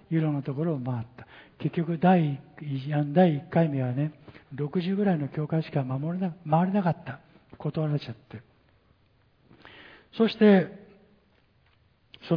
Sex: male